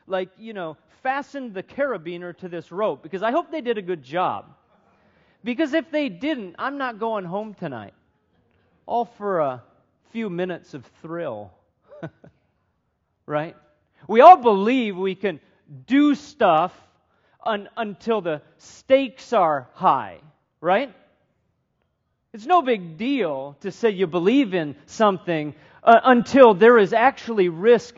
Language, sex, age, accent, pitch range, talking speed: English, male, 40-59, American, 145-225 Hz, 135 wpm